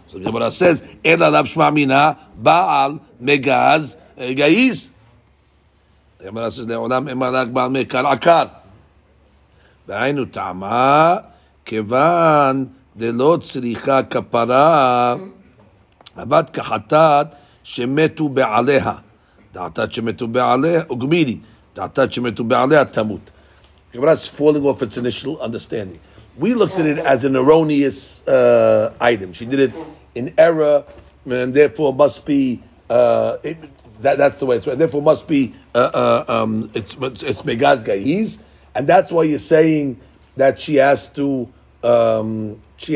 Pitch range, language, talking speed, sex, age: 115-145 Hz, English, 125 wpm, male, 50-69